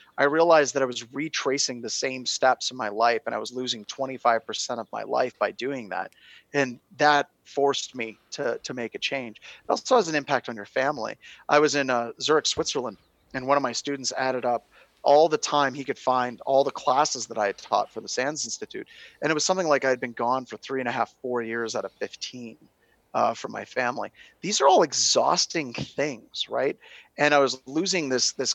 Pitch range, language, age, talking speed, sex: 120-145 Hz, English, 30-49, 220 wpm, male